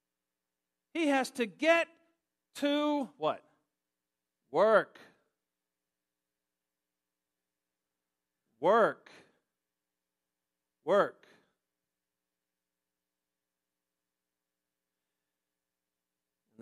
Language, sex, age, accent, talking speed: English, male, 50-69, American, 35 wpm